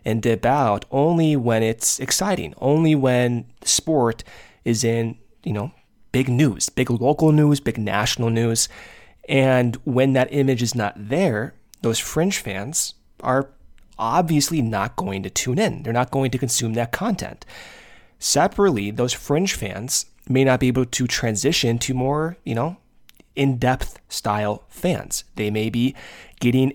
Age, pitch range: 20-39, 115-140 Hz